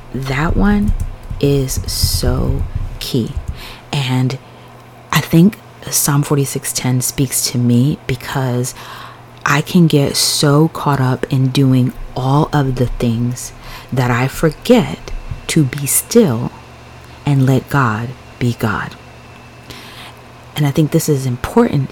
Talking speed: 120 wpm